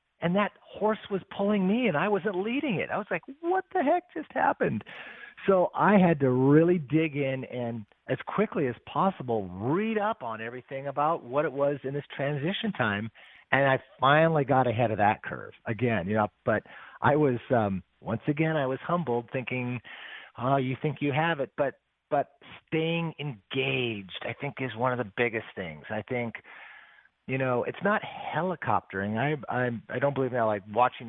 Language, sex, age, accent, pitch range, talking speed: English, male, 40-59, American, 115-155 Hz, 185 wpm